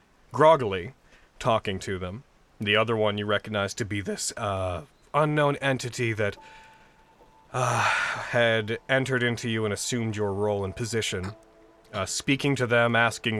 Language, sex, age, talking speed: English, male, 30-49, 145 wpm